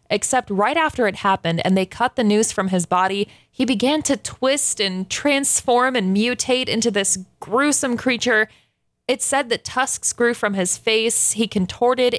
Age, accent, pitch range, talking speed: 20-39, American, 195-245 Hz, 170 wpm